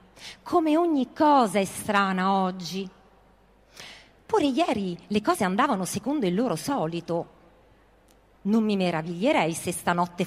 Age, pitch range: 40-59, 170-230 Hz